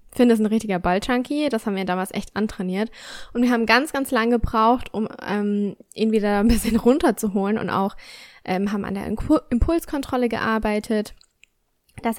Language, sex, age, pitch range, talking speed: German, female, 10-29, 210-255 Hz, 175 wpm